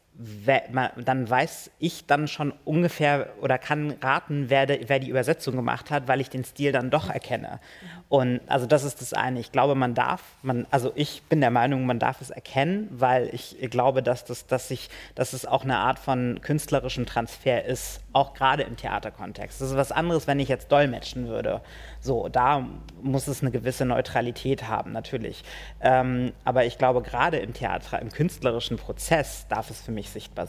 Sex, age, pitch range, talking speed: male, 30-49, 120-140 Hz, 185 wpm